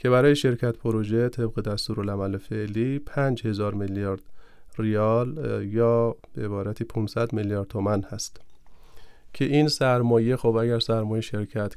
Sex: male